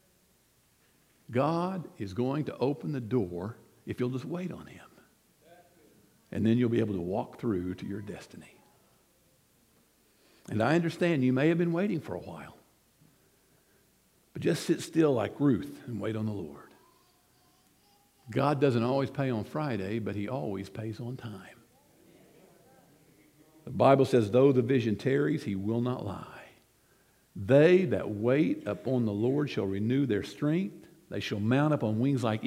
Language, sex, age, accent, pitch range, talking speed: English, male, 50-69, American, 110-155 Hz, 160 wpm